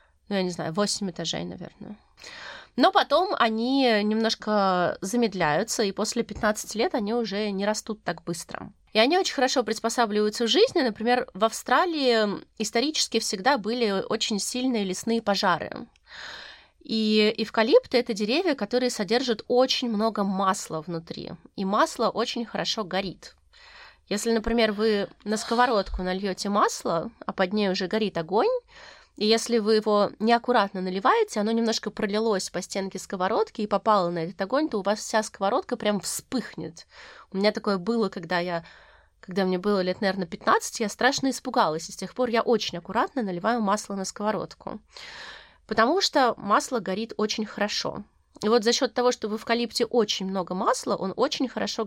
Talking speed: 160 wpm